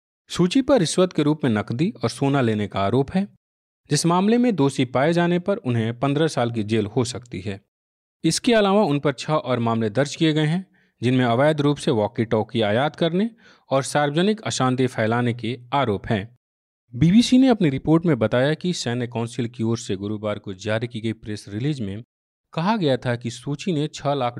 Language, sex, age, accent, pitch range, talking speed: Hindi, male, 40-59, native, 110-155 Hz, 200 wpm